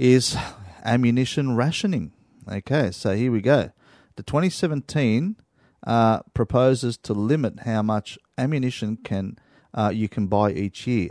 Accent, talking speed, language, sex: Australian, 130 wpm, English, male